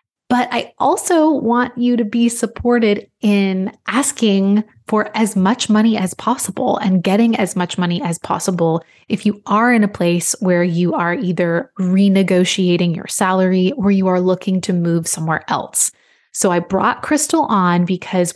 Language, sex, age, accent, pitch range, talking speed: English, female, 20-39, American, 180-225 Hz, 165 wpm